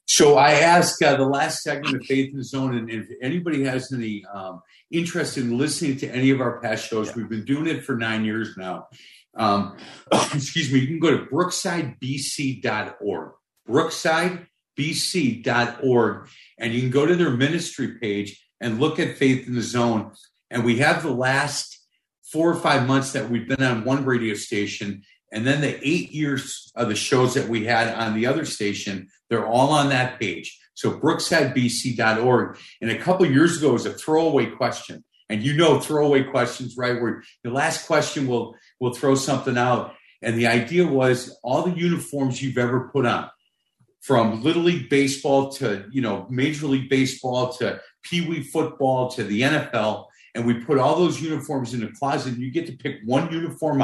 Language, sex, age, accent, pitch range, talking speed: English, male, 50-69, American, 120-150 Hz, 185 wpm